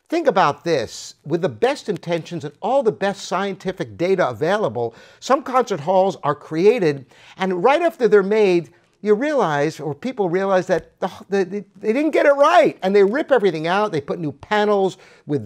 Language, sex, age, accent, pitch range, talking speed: English, male, 50-69, American, 165-225 Hz, 175 wpm